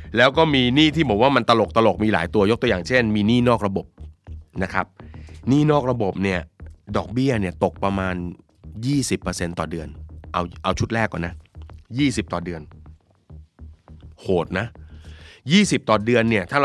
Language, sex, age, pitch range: Thai, male, 20-39, 85-110 Hz